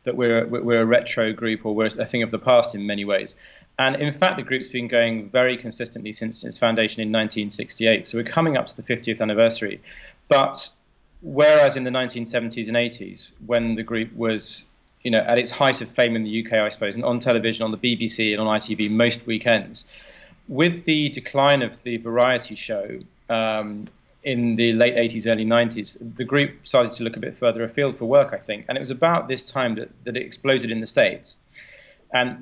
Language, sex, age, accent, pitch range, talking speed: English, male, 30-49, British, 110-130 Hz, 210 wpm